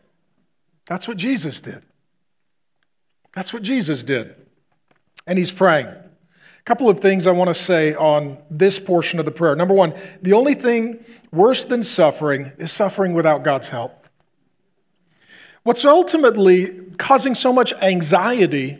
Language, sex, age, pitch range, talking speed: English, male, 40-59, 170-235 Hz, 135 wpm